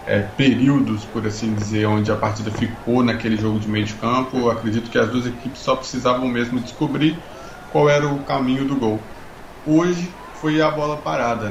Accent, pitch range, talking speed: Brazilian, 110-130 Hz, 175 wpm